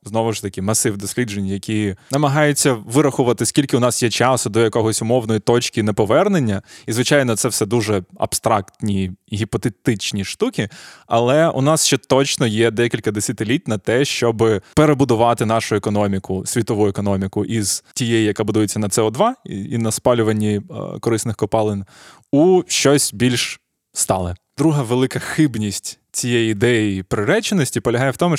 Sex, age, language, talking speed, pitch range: male, 20-39, Ukrainian, 140 wpm, 110-135 Hz